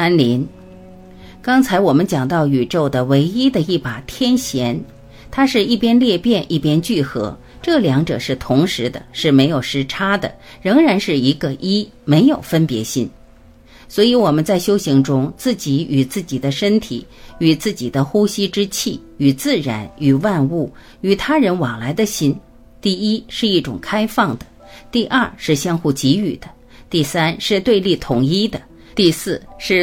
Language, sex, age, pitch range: Chinese, female, 50-69, 135-215 Hz